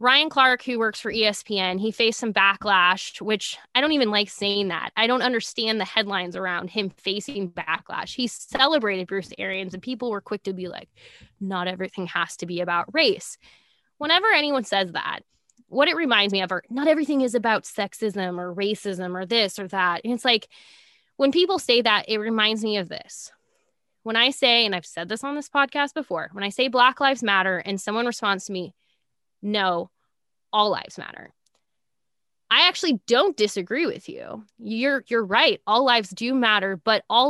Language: English